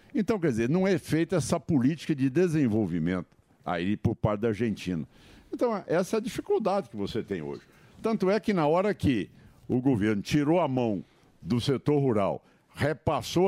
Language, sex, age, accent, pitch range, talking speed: Portuguese, male, 60-79, Brazilian, 100-140 Hz, 175 wpm